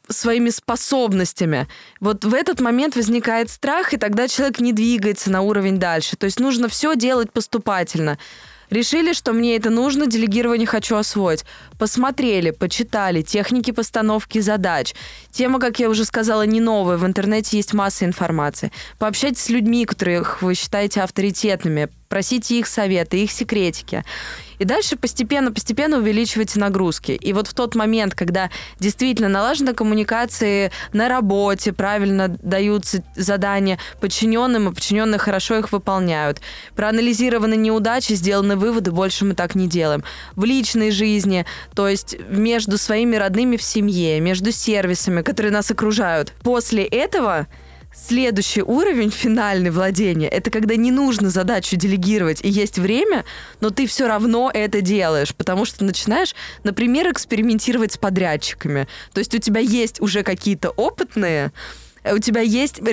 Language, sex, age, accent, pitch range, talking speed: Russian, female, 20-39, native, 195-235 Hz, 140 wpm